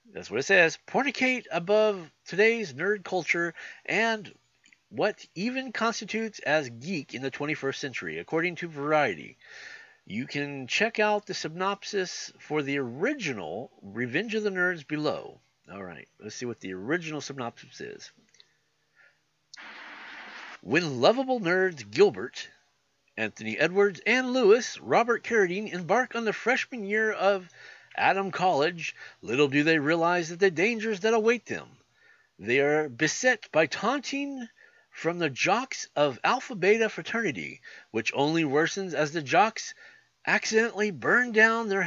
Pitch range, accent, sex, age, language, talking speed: 150-225 Hz, American, male, 50-69, English, 135 wpm